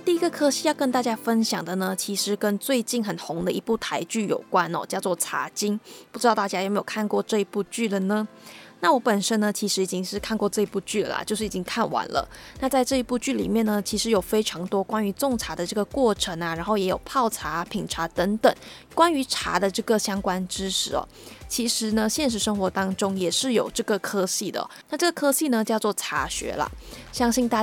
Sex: female